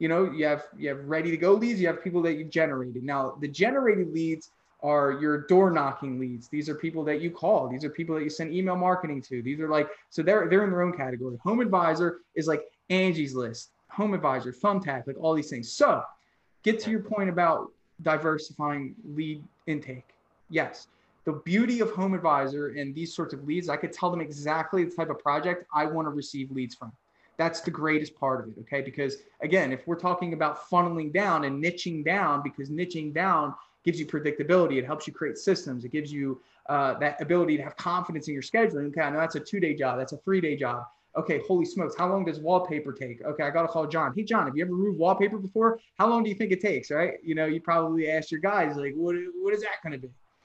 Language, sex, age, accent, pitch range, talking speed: English, male, 20-39, American, 145-180 Hz, 235 wpm